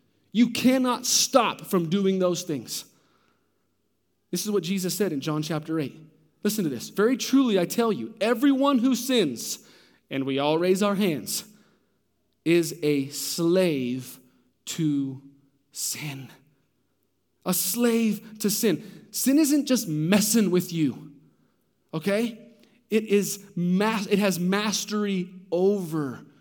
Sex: male